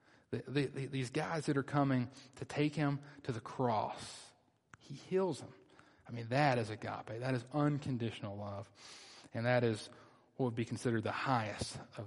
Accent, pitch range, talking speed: American, 110-140 Hz, 165 wpm